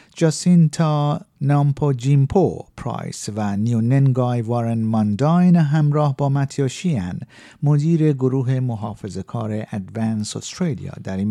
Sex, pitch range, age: male, 110-150 Hz, 50-69